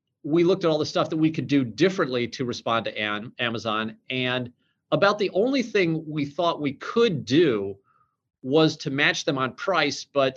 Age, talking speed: 40-59, 185 wpm